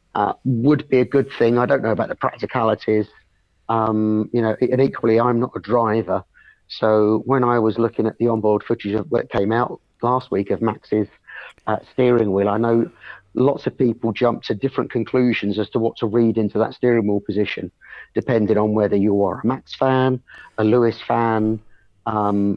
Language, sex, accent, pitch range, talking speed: English, male, British, 110-120 Hz, 190 wpm